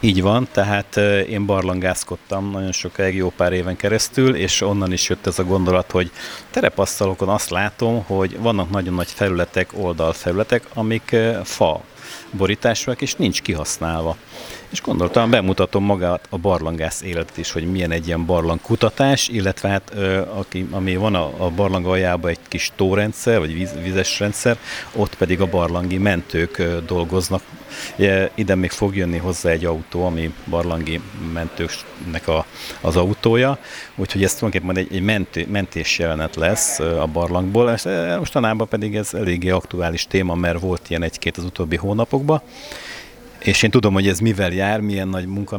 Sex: male